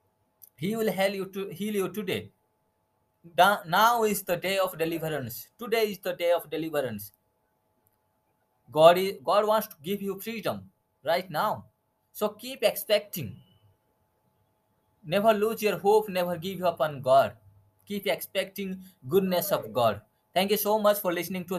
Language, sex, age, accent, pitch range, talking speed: English, male, 20-39, Indian, 125-175 Hz, 155 wpm